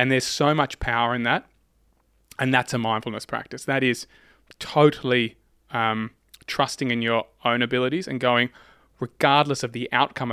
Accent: Australian